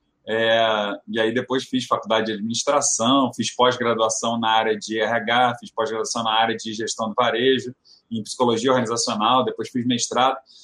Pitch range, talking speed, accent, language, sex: 120-170 Hz, 160 wpm, Brazilian, Portuguese, male